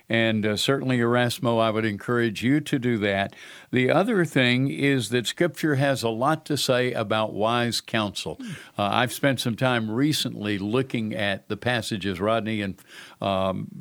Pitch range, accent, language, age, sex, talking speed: 110-130 Hz, American, English, 60-79, male, 165 wpm